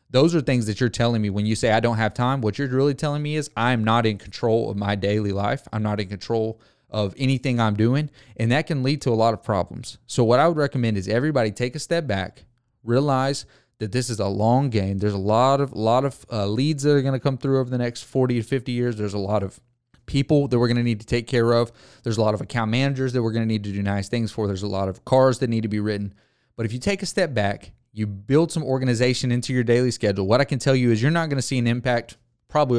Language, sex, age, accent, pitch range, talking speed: English, male, 30-49, American, 105-130 Hz, 275 wpm